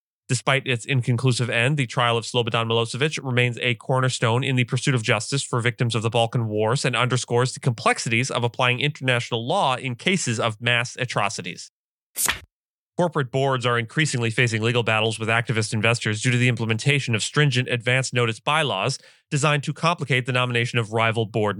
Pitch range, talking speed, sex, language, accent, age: 115-135 Hz, 175 wpm, male, English, American, 30-49